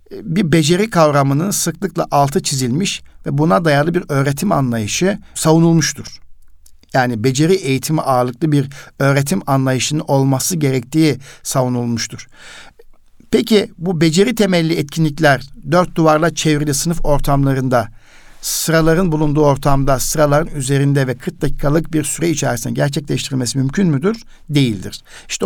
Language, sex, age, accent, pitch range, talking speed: Turkish, male, 60-79, native, 135-165 Hz, 115 wpm